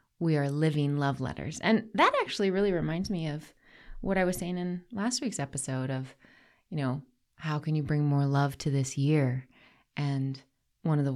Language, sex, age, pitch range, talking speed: English, female, 20-39, 135-160 Hz, 195 wpm